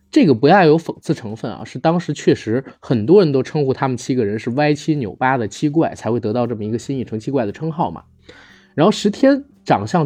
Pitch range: 115-170 Hz